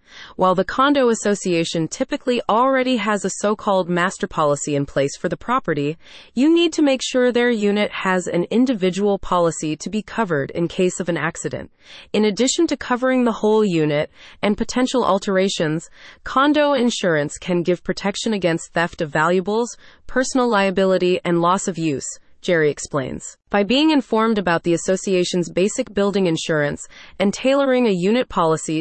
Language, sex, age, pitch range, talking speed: English, female, 30-49, 170-225 Hz, 160 wpm